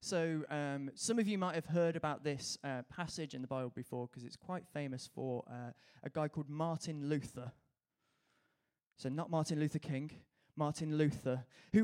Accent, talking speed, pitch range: British, 175 wpm, 140-175 Hz